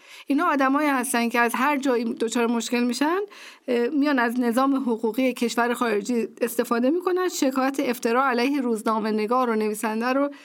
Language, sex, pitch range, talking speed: Persian, female, 225-275 Hz, 150 wpm